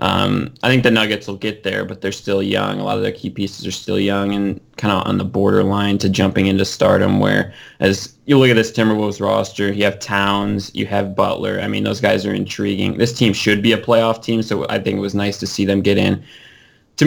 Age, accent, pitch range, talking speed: 20-39, American, 100-115 Hz, 245 wpm